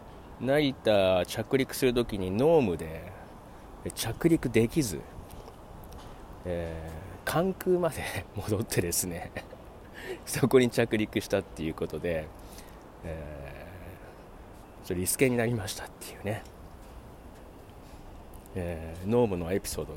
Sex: male